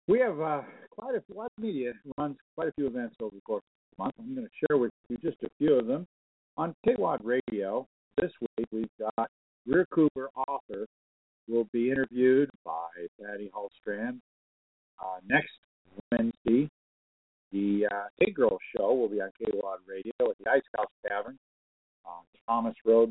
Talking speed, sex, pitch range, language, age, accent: 170 wpm, male, 105-155 Hz, English, 50-69, American